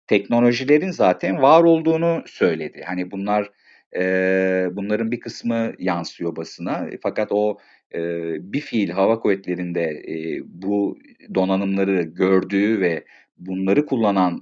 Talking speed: 110 wpm